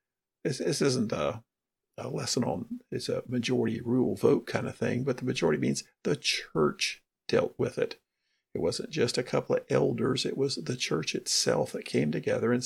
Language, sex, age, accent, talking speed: English, male, 50-69, American, 180 wpm